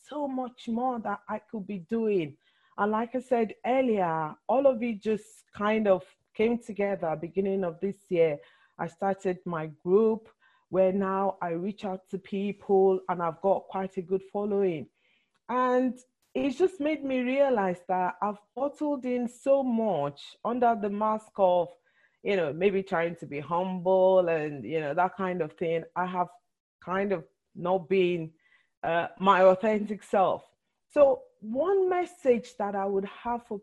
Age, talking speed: 40-59, 160 wpm